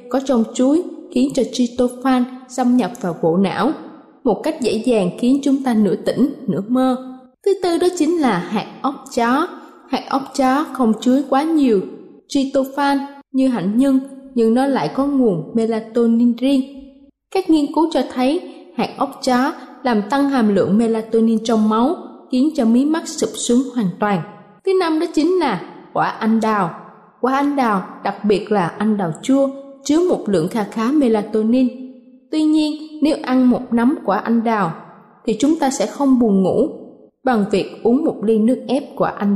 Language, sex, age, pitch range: Thai, female, 20-39, 220-280 Hz